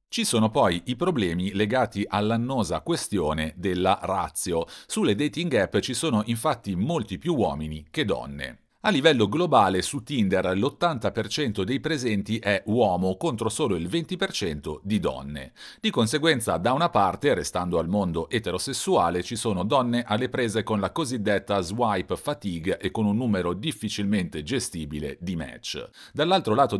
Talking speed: 150 wpm